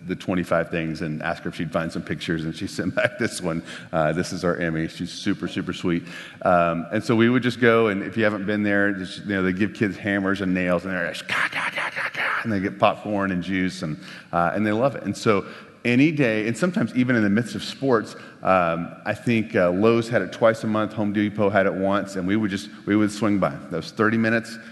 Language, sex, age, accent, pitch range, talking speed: English, male, 40-59, American, 90-110 Hz, 245 wpm